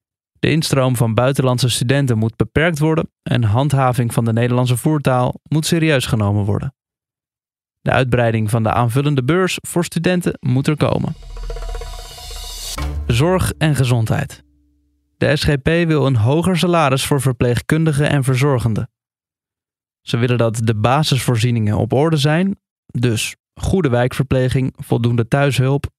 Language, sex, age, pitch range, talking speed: Dutch, male, 20-39, 115-150 Hz, 125 wpm